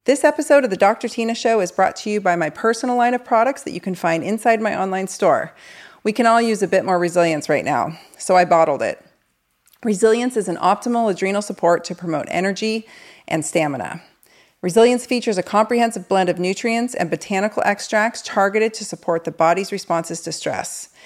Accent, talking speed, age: American, 195 wpm, 40-59